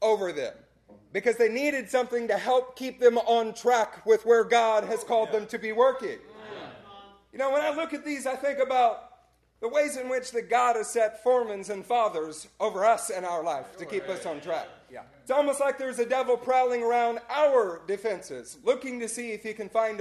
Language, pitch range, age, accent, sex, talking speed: English, 220-275 Hz, 40-59, American, male, 205 wpm